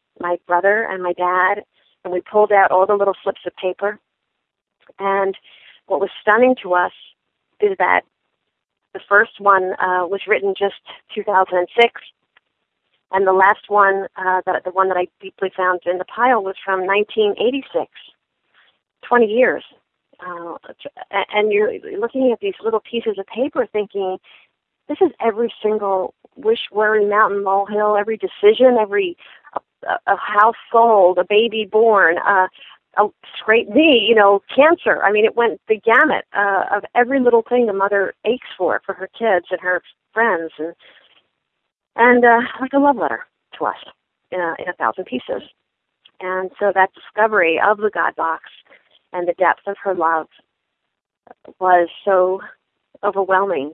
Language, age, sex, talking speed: English, 40-59, female, 150 wpm